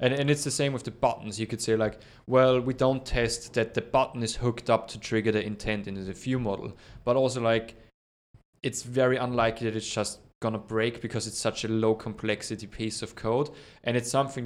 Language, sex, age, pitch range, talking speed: English, male, 20-39, 105-120 Hz, 225 wpm